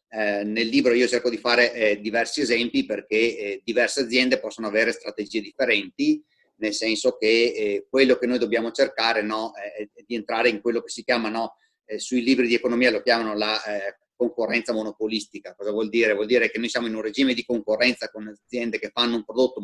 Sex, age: male, 30-49